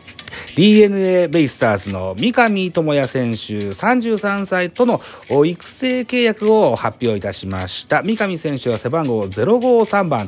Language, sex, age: Japanese, male, 40-59